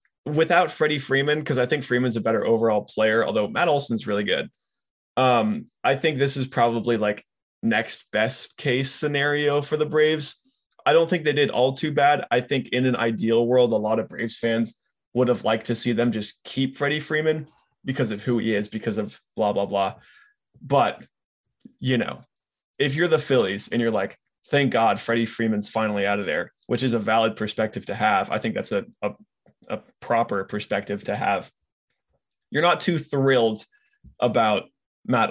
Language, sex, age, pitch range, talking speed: English, male, 20-39, 110-145 Hz, 185 wpm